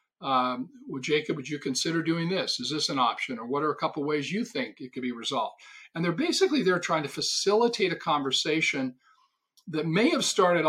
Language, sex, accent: English, male, American